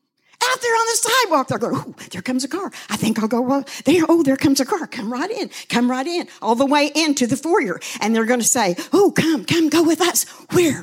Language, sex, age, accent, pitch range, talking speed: English, female, 50-69, American, 245-355 Hz, 260 wpm